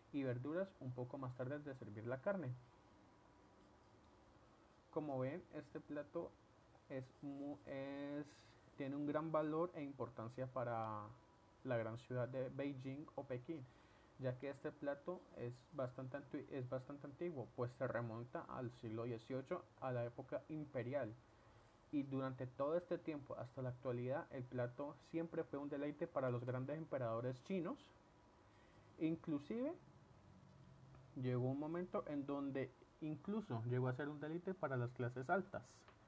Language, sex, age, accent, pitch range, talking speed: Spanish, male, 30-49, Colombian, 120-150 Hz, 140 wpm